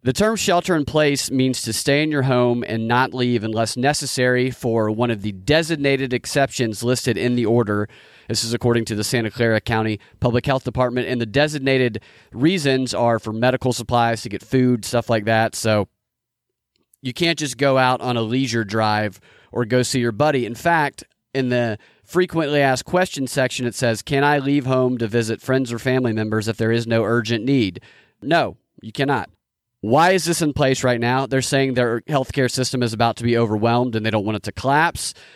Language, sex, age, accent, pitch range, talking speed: English, male, 30-49, American, 115-140 Hz, 200 wpm